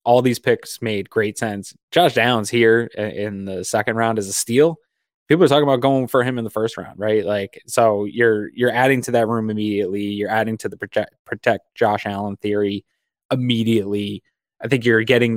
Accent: American